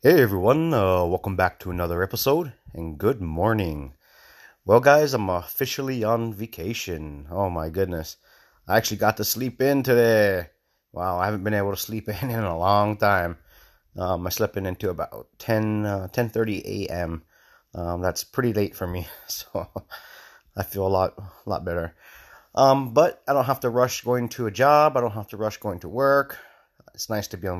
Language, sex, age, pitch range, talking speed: English, male, 30-49, 95-115 Hz, 190 wpm